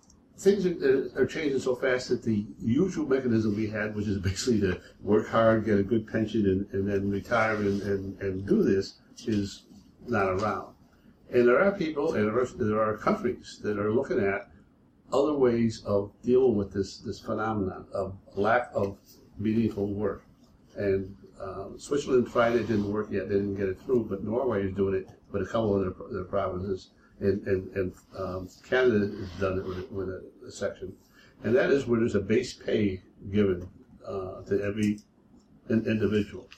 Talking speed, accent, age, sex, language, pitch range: 180 wpm, American, 60-79, male, English, 100-115 Hz